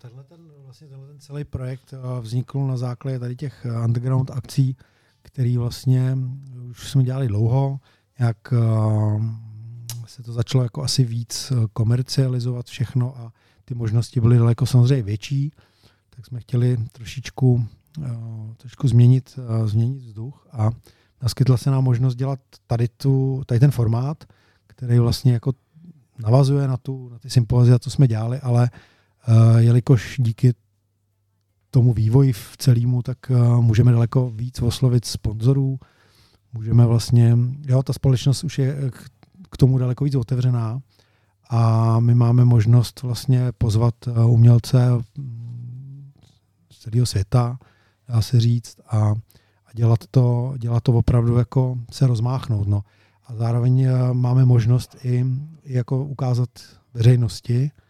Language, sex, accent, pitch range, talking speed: Czech, male, native, 115-130 Hz, 130 wpm